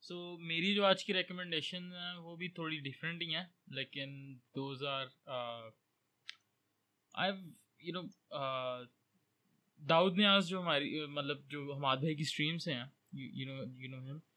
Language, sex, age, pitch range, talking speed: Urdu, male, 20-39, 130-160 Hz, 115 wpm